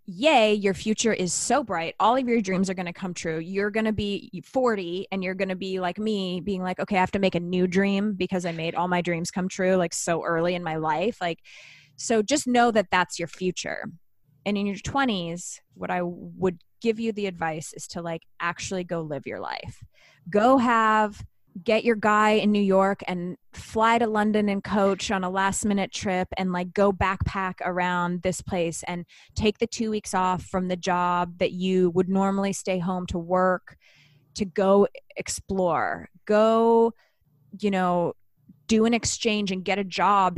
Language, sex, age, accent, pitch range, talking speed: English, female, 20-39, American, 175-210 Hz, 200 wpm